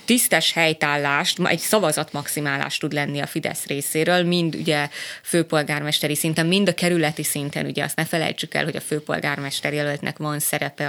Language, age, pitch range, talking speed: Hungarian, 20-39, 150-170 Hz, 155 wpm